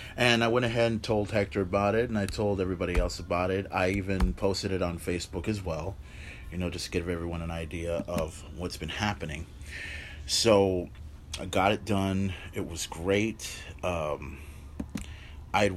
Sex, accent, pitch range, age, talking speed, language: male, American, 85-110 Hz, 30-49, 175 wpm, English